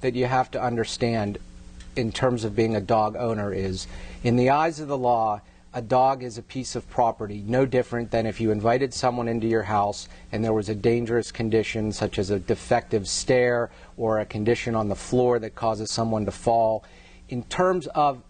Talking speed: 200 wpm